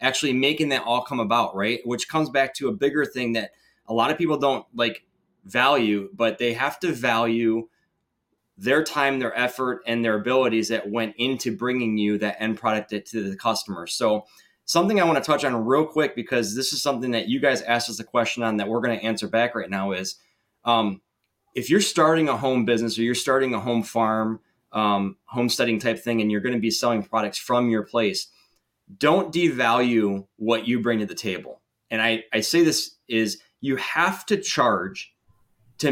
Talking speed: 200 wpm